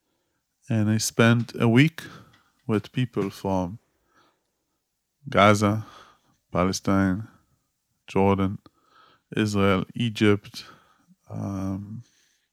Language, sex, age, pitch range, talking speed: English, male, 20-39, 105-125 Hz, 60 wpm